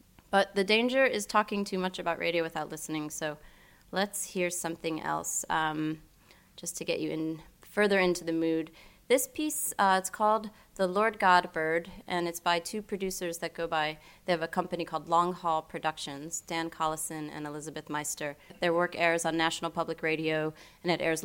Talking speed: 185 wpm